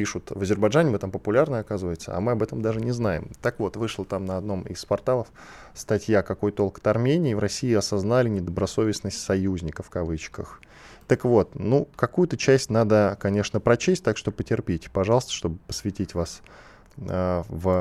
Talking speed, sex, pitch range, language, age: 170 wpm, male, 95-135 Hz, Russian, 20-39